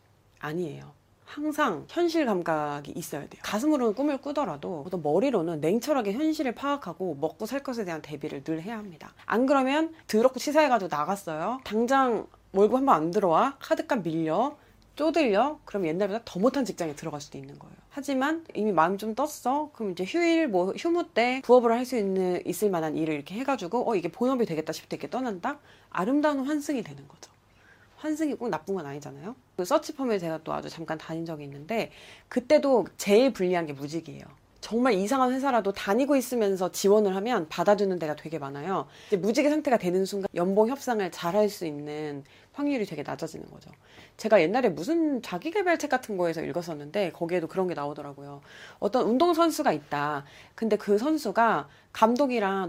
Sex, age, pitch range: female, 30-49, 160-265 Hz